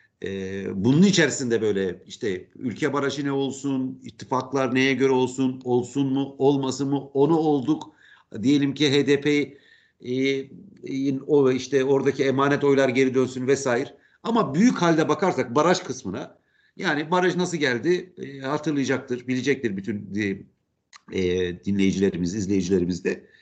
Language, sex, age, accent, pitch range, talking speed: Turkish, male, 50-69, native, 120-175 Hz, 115 wpm